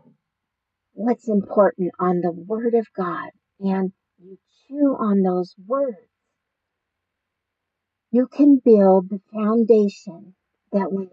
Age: 50-69